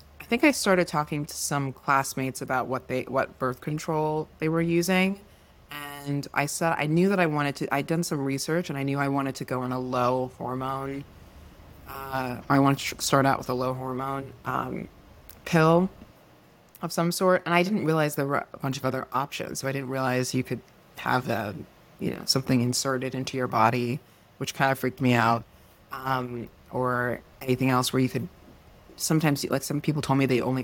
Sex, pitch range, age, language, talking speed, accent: female, 125-150 Hz, 20-39, English, 200 wpm, American